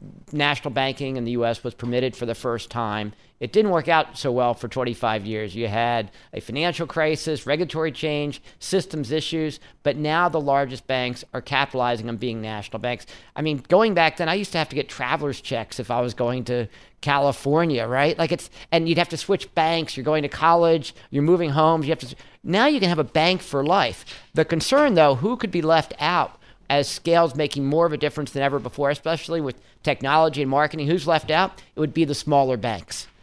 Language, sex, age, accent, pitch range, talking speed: English, male, 50-69, American, 130-160 Hz, 215 wpm